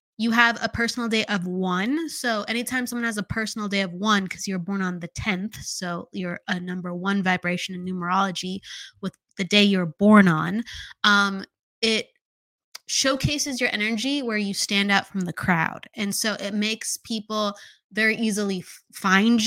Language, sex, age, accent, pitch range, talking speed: English, female, 20-39, American, 185-225 Hz, 175 wpm